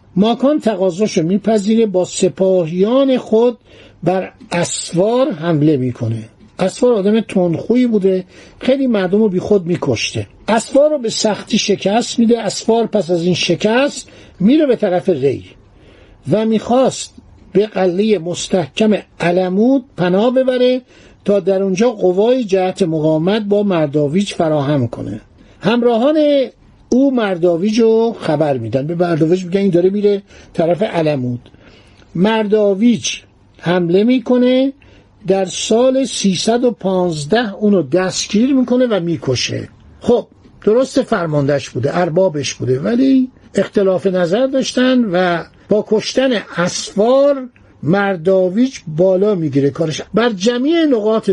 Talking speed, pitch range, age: 115 wpm, 170-230 Hz, 60-79